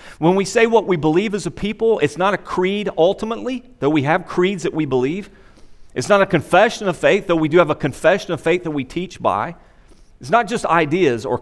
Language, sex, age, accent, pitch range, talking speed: English, male, 40-59, American, 150-215 Hz, 230 wpm